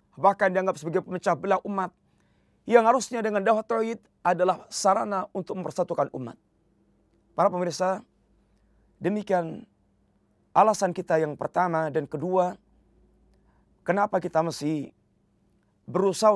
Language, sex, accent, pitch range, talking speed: Indonesian, male, native, 150-185 Hz, 105 wpm